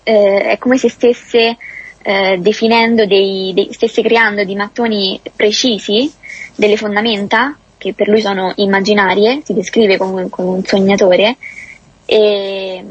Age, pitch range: 20-39, 200-240 Hz